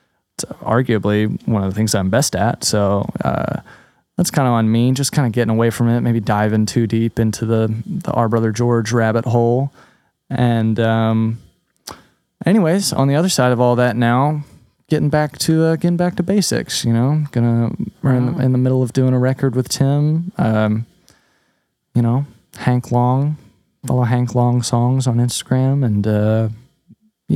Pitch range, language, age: 110-135 Hz, English, 20-39